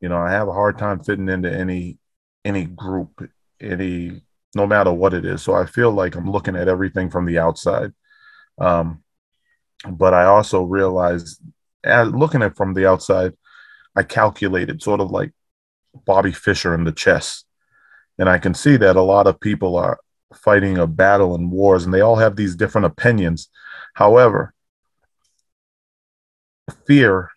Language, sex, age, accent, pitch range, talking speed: English, male, 30-49, American, 90-110 Hz, 160 wpm